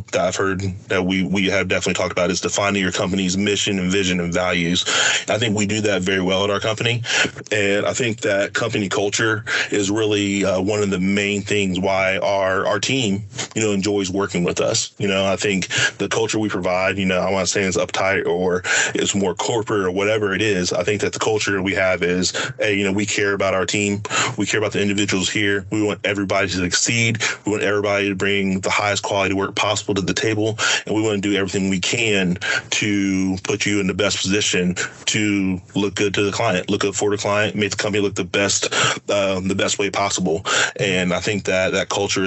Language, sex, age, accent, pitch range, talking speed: English, male, 20-39, American, 95-105 Hz, 225 wpm